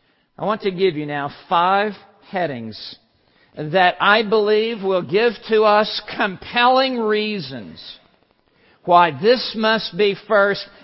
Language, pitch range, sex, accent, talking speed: English, 200-270 Hz, male, American, 120 wpm